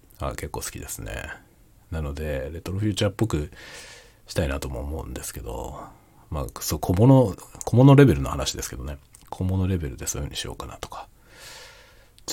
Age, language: 40-59, Japanese